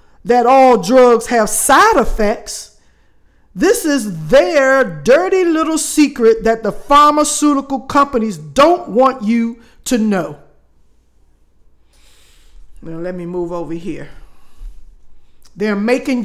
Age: 50-69